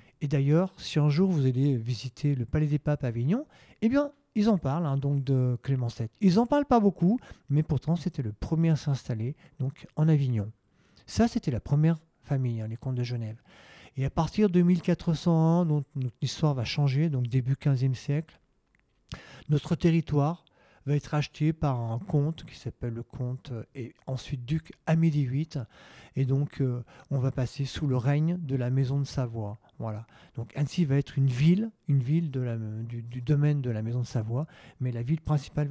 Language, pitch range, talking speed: French, 125-160 Hz, 195 wpm